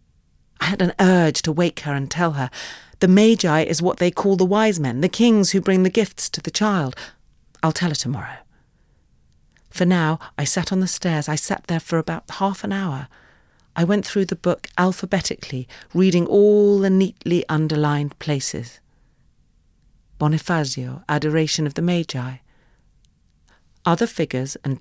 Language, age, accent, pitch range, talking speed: English, 40-59, British, 135-185 Hz, 160 wpm